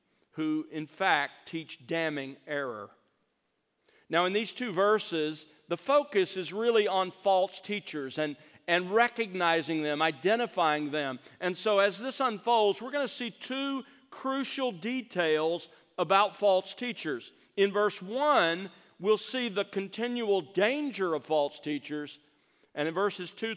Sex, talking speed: male, 135 wpm